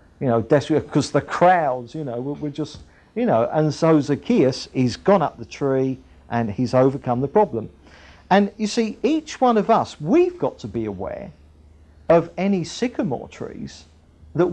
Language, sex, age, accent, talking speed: English, male, 50-69, British, 170 wpm